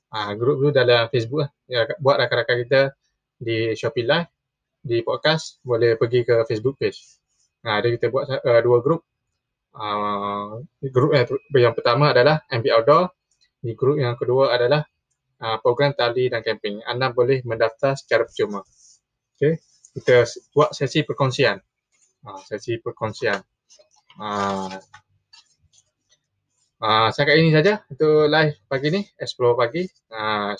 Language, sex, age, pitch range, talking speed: Malay, male, 20-39, 115-150 Hz, 140 wpm